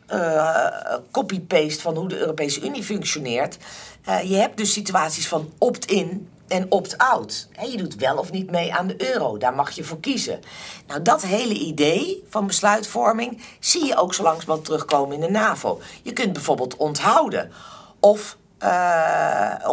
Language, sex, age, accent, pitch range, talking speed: Dutch, female, 50-69, Dutch, 155-210 Hz, 165 wpm